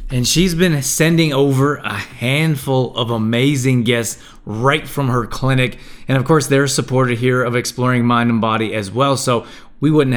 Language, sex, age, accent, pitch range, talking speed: English, male, 30-49, American, 120-140 Hz, 175 wpm